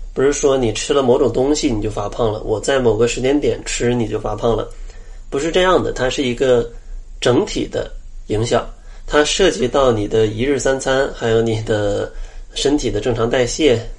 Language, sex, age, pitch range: Chinese, male, 20-39, 115-150 Hz